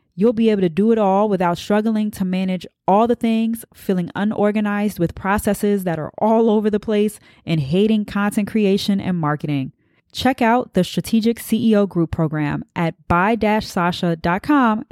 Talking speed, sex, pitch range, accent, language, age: 155 wpm, female, 170-220 Hz, American, English, 20-39